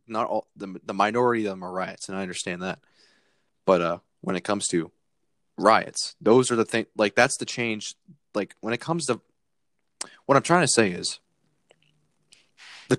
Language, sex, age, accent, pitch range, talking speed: English, male, 20-39, American, 100-130 Hz, 185 wpm